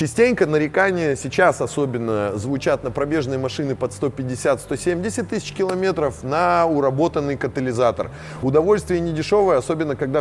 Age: 20-39